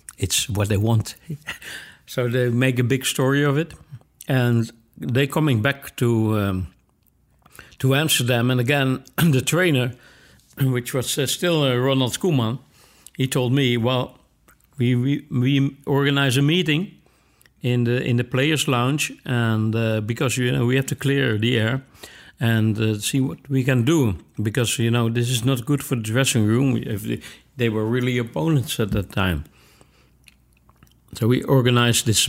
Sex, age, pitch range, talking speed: male, 60-79, 110-135 Hz, 160 wpm